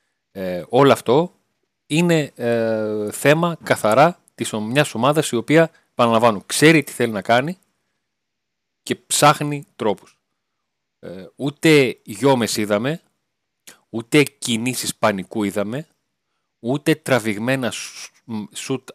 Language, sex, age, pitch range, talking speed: Greek, male, 40-59, 105-140 Hz, 100 wpm